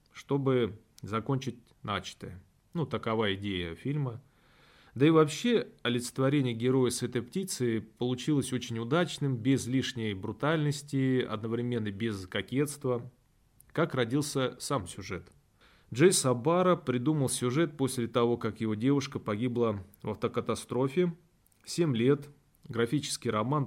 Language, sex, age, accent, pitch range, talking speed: Russian, male, 30-49, native, 115-140 Hz, 110 wpm